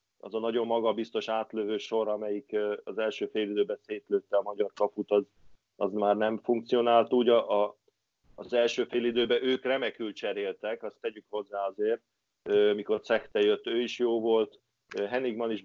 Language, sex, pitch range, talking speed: Hungarian, male, 100-120 Hz, 155 wpm